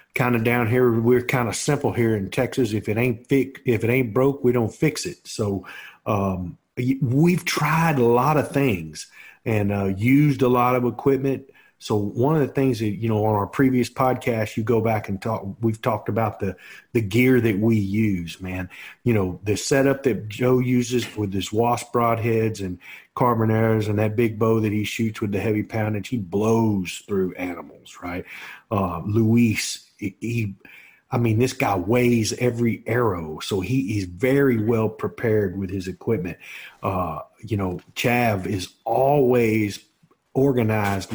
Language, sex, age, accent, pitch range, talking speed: English, male, 40-59, American, 100-125 Hz, 175 wpm